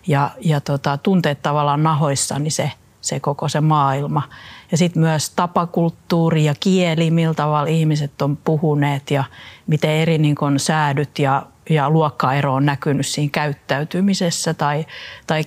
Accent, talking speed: native, 145 wpm